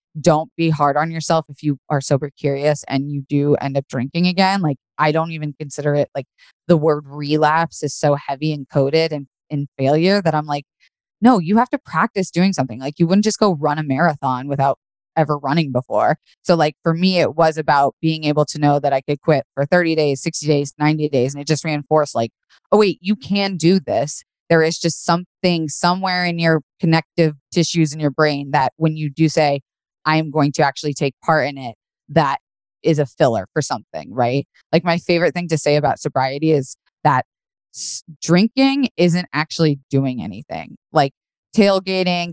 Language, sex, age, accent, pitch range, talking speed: English, female, 20-39, American, 145-170 Hz, 200 wpm